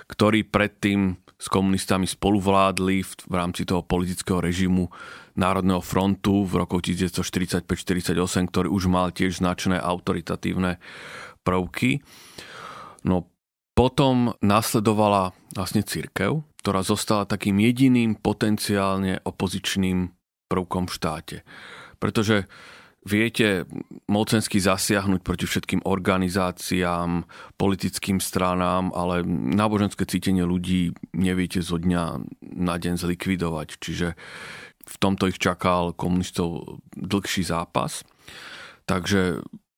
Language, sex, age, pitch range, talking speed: Slovak, male, 30-49, 90-100 Hz, 100 wpm